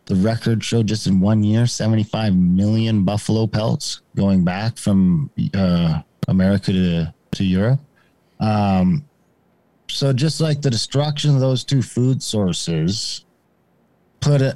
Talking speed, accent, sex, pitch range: 130 wpm, American, male, 100-130 Hz